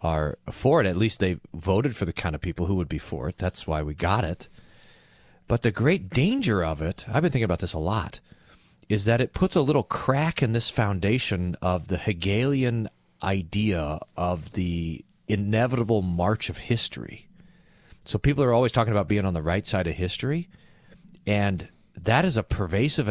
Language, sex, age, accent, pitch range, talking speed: English, male, 40-59, American, 90-115 Hz, 190 wpm